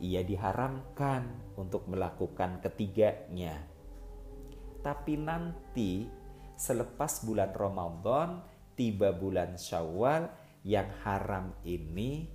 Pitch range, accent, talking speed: 90-120 Hz, native, 80 wpm